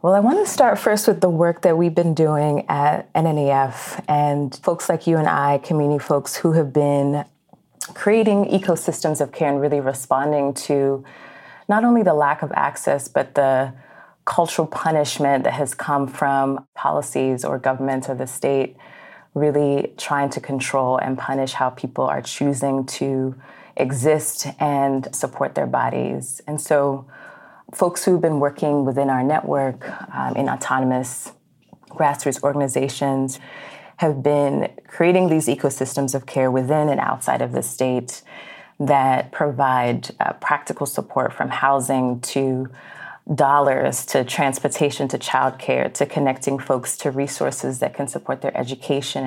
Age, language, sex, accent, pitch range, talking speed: 30-49, English, female, American, 135-155 Hz, 145 wpm